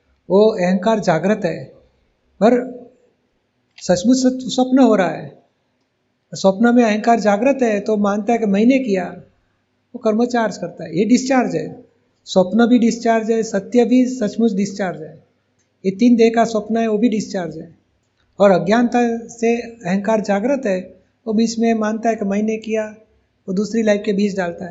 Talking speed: 165 wpm